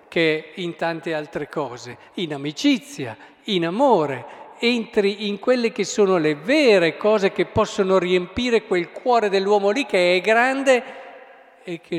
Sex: male